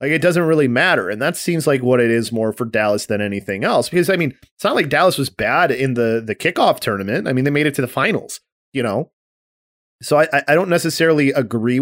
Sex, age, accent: male, 30-49, American